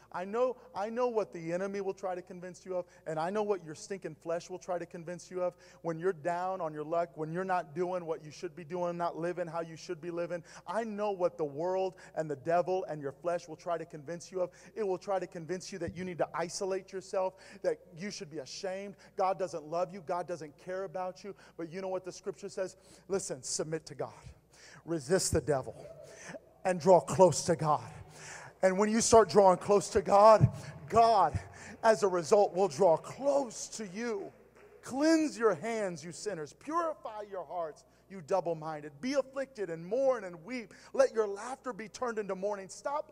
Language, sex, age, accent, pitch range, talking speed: English, male, 40-59, American, 160-205 Hz, 210 wpm